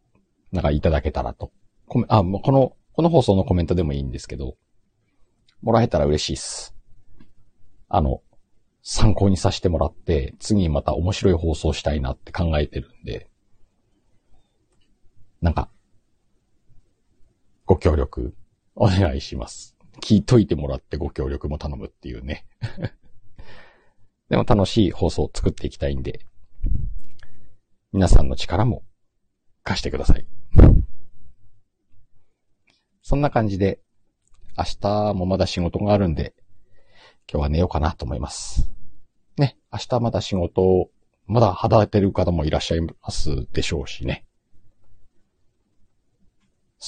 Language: Japanese